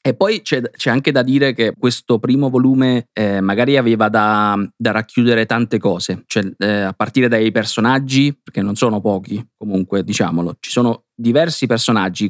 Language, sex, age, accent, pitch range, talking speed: Italian, male, 20-39, native, 110-135 Hz, 170 wpm